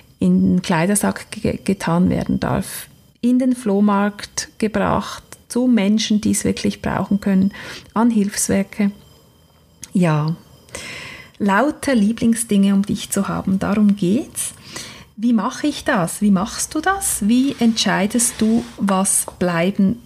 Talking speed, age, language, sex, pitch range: 125 wpm, 30-49, German, female, 190-225 Hz